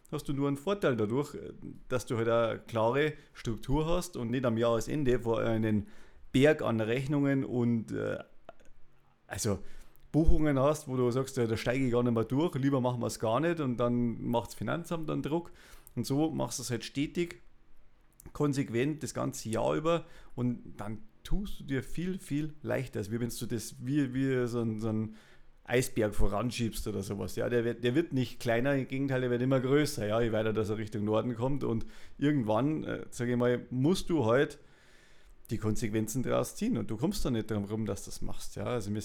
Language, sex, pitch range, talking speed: German, male, 110-135 Hz, 205 wpm